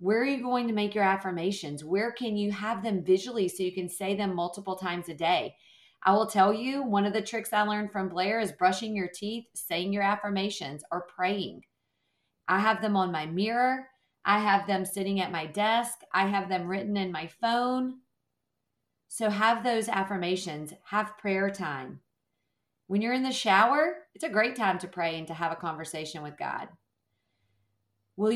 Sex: female